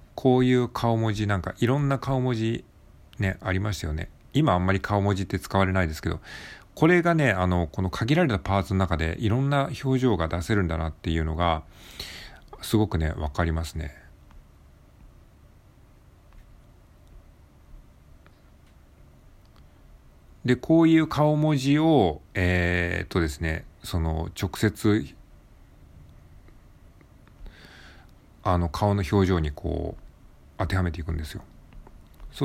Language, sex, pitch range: Japanese, male, 80-105 Hz